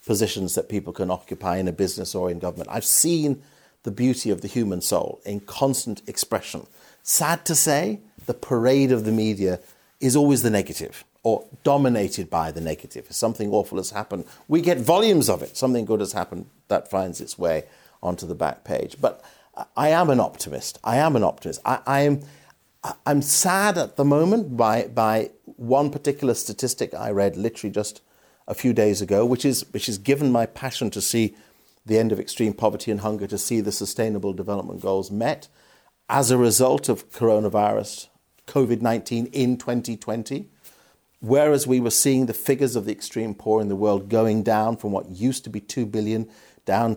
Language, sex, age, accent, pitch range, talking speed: English, male, 50-69, British, 105-130 Hz, 185 wpm